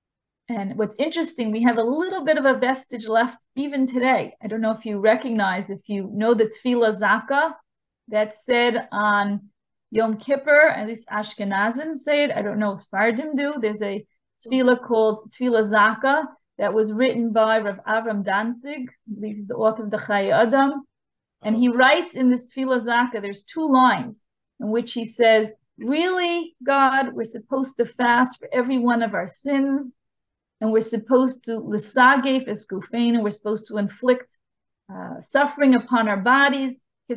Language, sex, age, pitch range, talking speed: English, female, 30-49, 220-265 Hz, 165 wpm